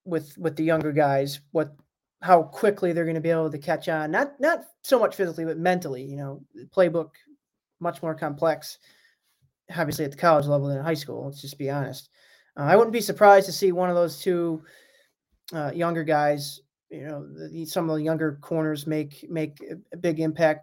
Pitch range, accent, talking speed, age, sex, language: 145-175 Hz, American, 200 wpm, 20-39, male, English